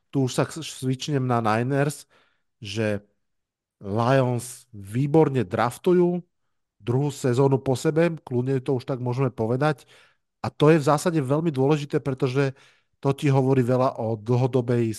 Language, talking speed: Slovak, 135 wpm